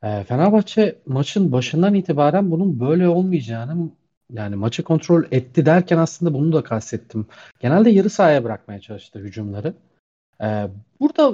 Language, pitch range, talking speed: Turkish, 110-150 Hz, 130 wpm